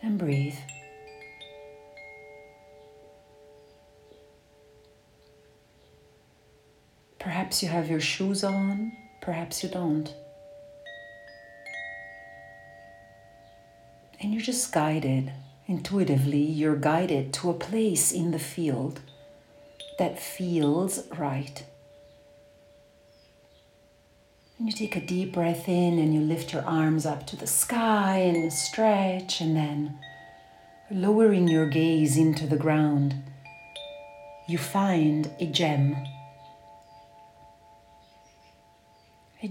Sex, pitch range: female, 140-180 Hz